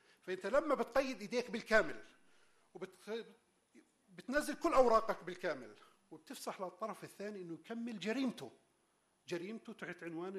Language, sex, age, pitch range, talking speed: English, male, 50-69, 180-230 Hz, 110 wpm